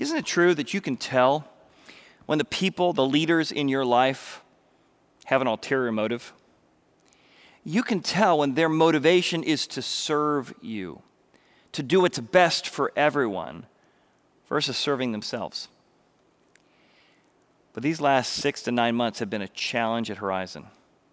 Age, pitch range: 40-59, 115-150 Hz